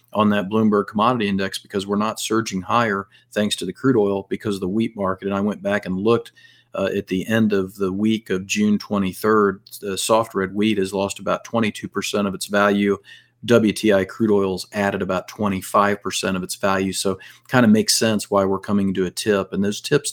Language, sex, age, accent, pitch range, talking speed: English, male, 40-59, American, 95-105 Hz, 210 wpm